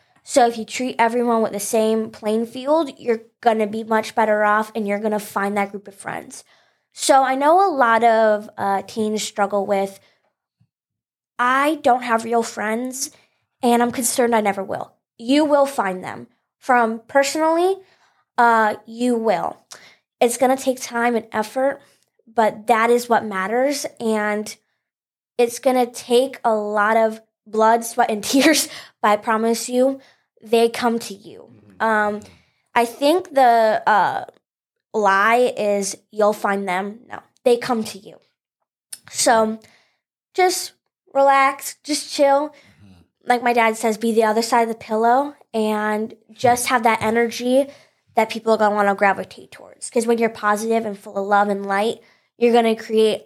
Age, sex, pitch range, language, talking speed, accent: 20-39, female, 210-245 Hz, English, 165 wpm, American